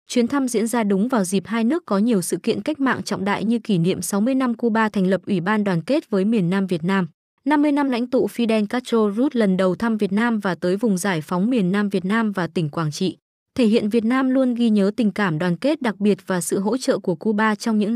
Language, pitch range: Vietnamese, 195-250 Hz